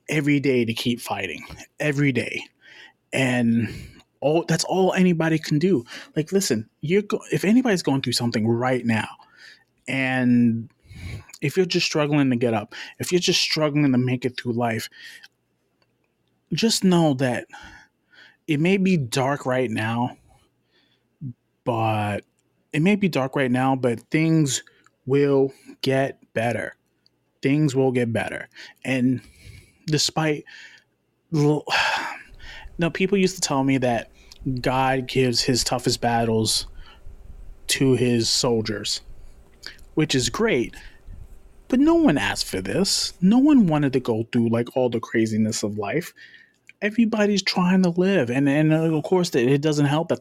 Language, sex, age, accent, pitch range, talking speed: English, male, 20-39, American, 120-160 Hz, 140 wpm